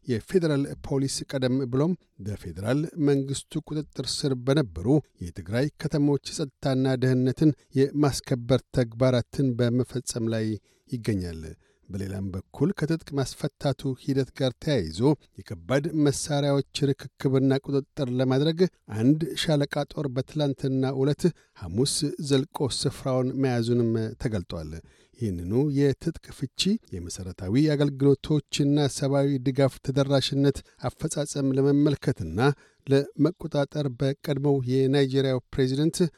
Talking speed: 95 wpm